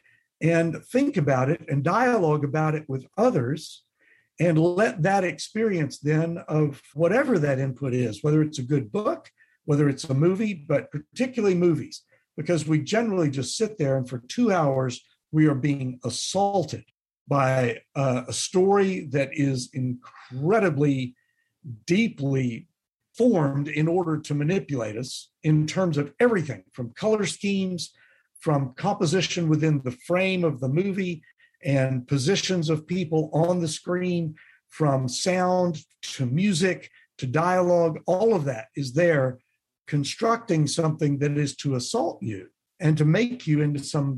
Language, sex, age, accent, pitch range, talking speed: English, male, 50-69, American, 140-180 Hz, 145 wpm